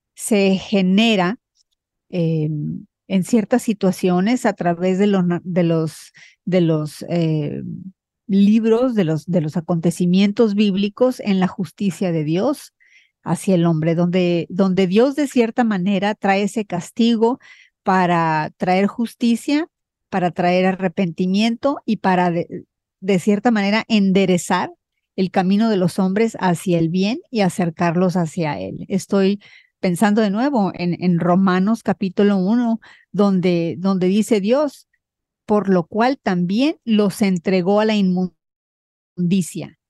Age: 40-59